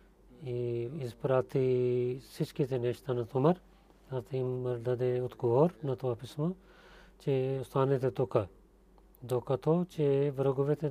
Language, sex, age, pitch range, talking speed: Bulgarian, male, 40-59, 125-155 Hz, 105 wpm